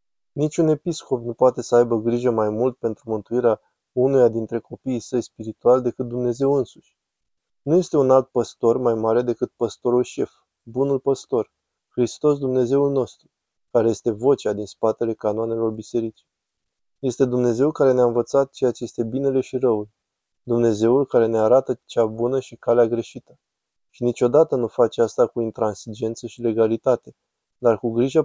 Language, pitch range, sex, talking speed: Romanian, 115-130 Hz, male, 155 wpm